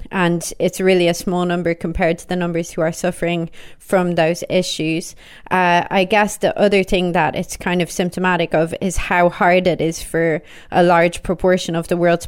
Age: 20-39